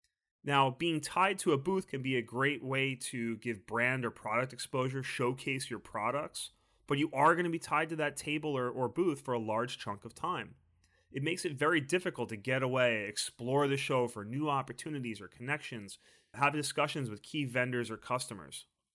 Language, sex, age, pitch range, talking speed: English, male, 30-49, 115-145 Hz, 195 wpm